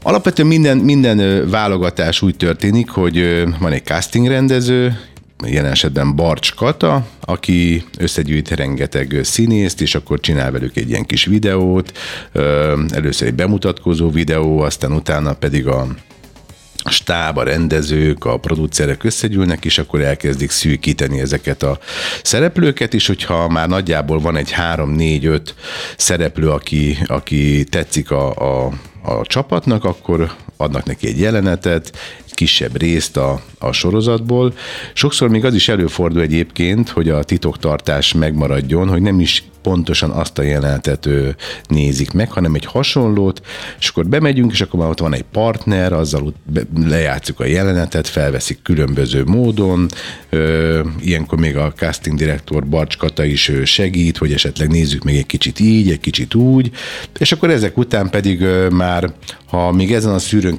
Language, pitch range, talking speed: Hungarian, 75-100 Hz, 140 wpm